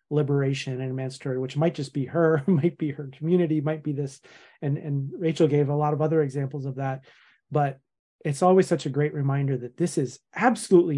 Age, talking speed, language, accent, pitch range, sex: 30-49, 200 wpm, English, American, 135-170 Hz, male